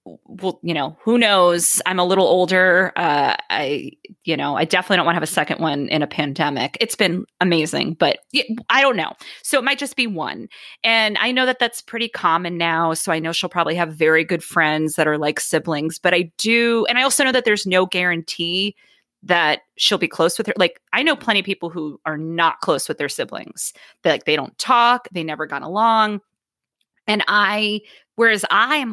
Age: 30-49